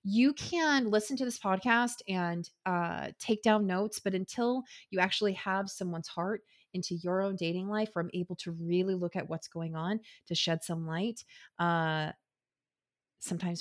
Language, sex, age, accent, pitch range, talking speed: English, female, 30-49, American, 170-215 Hz, 170 wpm